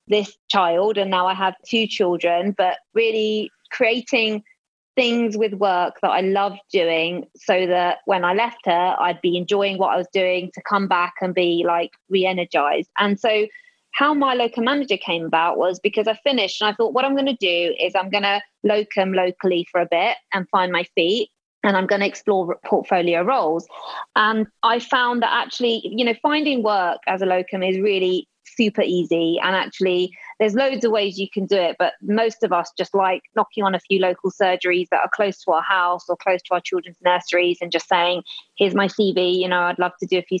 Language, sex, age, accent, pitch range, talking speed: English, female, 20-39, British, 180-225 Hz, 210 wpm